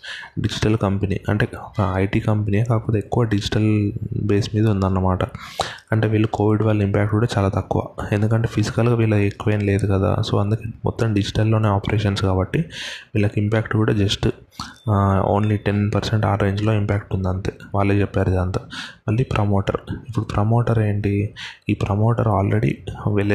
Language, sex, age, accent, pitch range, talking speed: Telugu, male, 20-39, native, 100-110 Hz, 140 wpm